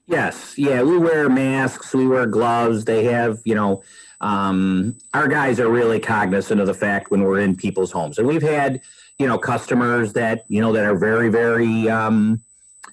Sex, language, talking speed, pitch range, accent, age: male, English, 190 wpm, 95-120 Hz, American, 40-59